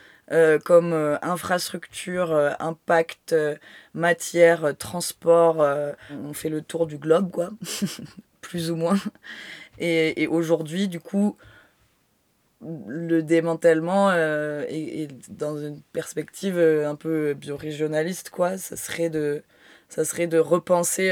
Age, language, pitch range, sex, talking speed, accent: 20-39, French, 150-175 Hz, female, 130 wpm, French